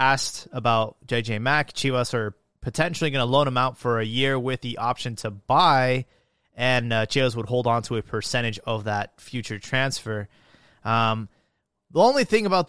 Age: 20-39